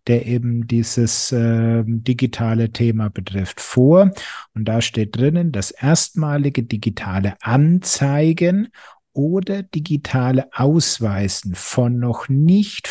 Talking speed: 100 wpm